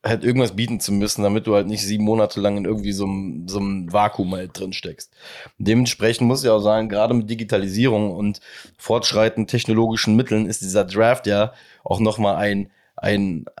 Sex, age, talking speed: male, 20-39, 175 wpm